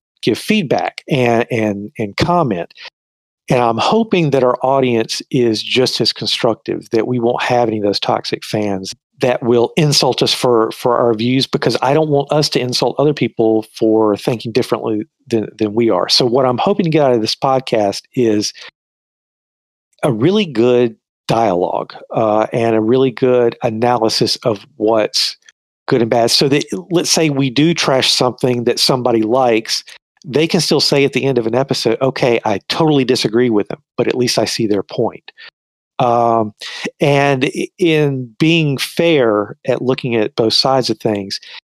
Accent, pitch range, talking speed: American, 115-145 Hz, 175 wpm